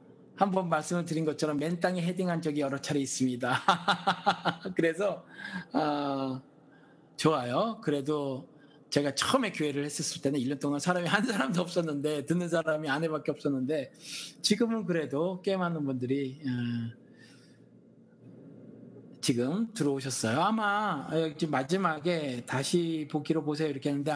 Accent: native